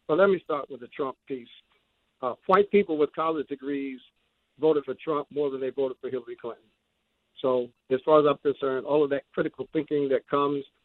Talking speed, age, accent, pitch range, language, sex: 210 wpm, 60-79, American, 140-170 Hz, English, male